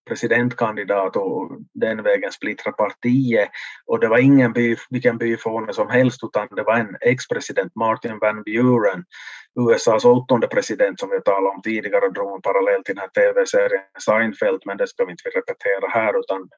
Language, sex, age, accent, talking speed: Swedish, male, 30-49, Finnish, 170 wpm